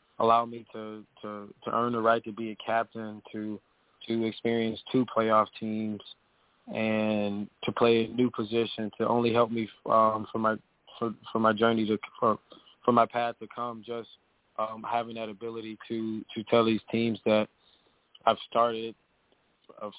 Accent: American